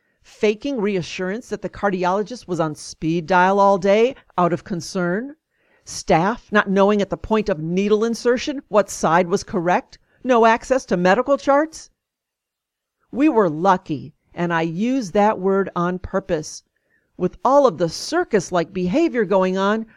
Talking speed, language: 155 wpm, English